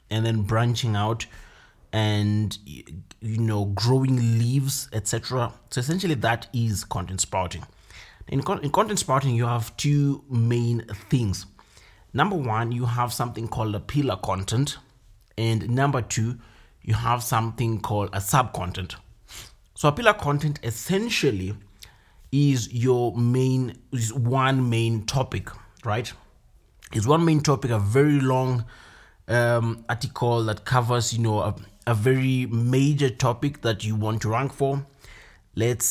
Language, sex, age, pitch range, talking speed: English, male, 30-49, 110-130 Hz, 135 wpm